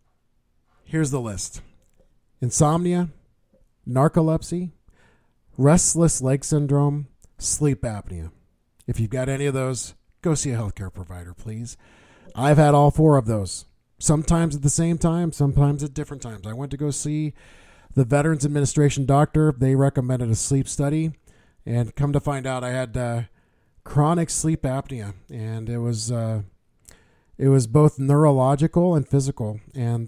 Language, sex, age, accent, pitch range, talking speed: English, male, 40-59, American, 120-150 Hz, 145 wpm